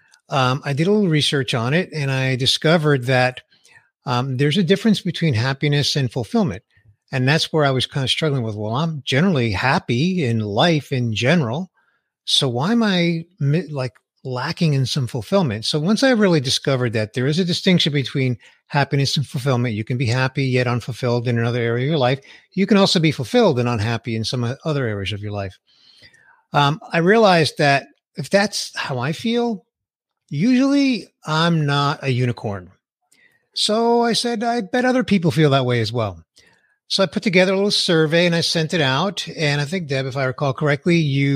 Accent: American